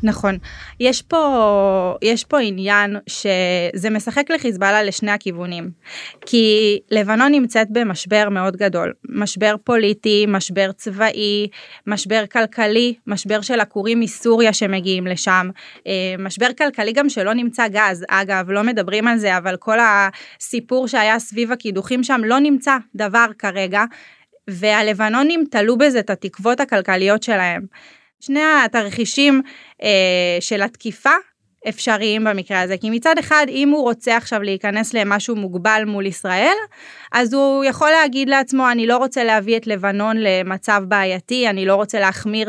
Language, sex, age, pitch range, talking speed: Hebrew, female, 20-39, 200-240 Hz, 135 wpm